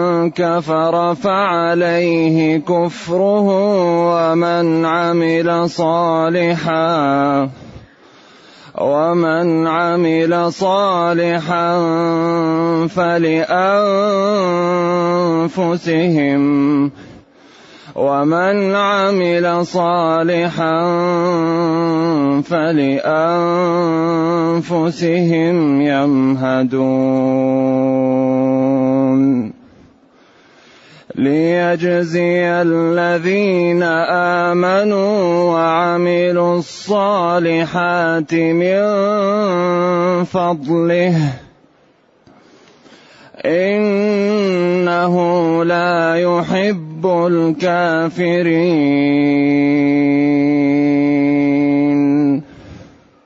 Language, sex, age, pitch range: Arabic, male, 30-49, 160-175 Hz